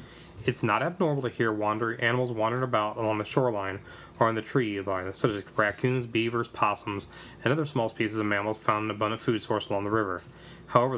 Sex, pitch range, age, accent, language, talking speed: male, 105-130 Hz, 30-49, American, English, 210 wpm